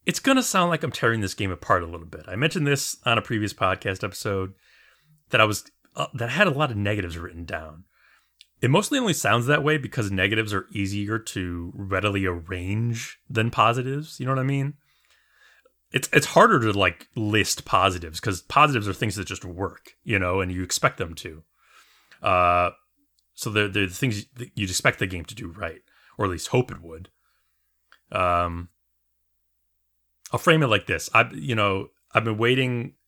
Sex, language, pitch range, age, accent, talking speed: male, English, 90-115 Hz, 30-49, American, 195 wpm